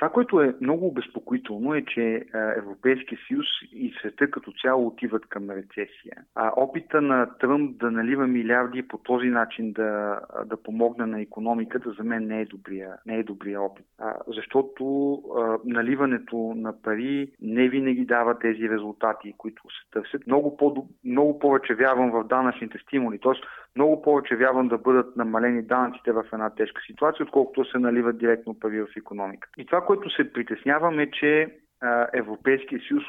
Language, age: Bulgarian, 40-59